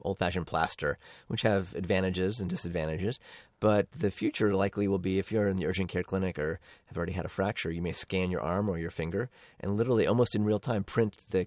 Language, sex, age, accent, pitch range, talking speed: English, male, 30-49, American, 90-105 Hz, 220 wpm